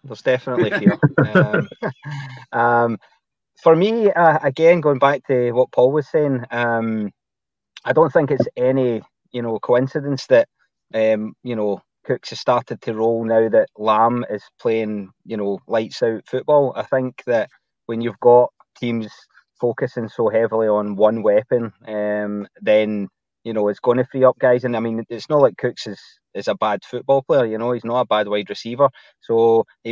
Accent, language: British, English